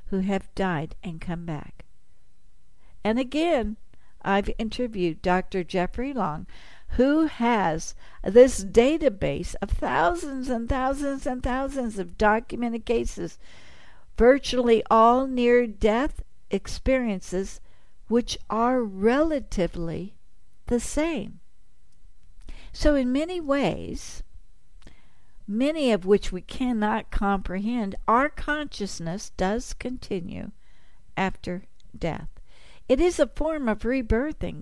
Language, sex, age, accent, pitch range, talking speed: English, female, 60-79, American, 195-255 Hz, 100 wpm